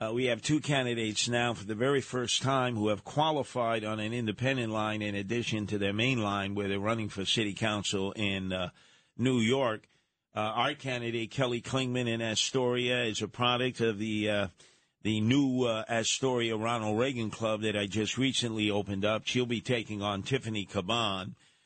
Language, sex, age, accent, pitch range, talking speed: English, male, 50-69, American, 105-125 Hz, 185 wpm